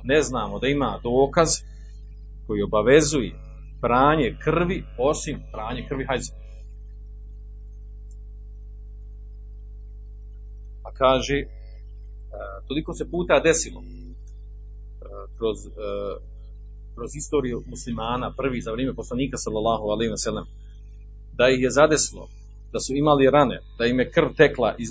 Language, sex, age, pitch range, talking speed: Croatian, male, 40-59, 105-130 Hz, 110 wpm